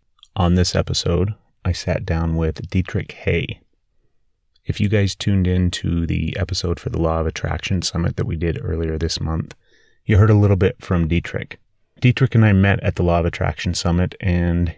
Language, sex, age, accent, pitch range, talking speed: English, male, 30-49, American, 80-95 Hz, 190 wpm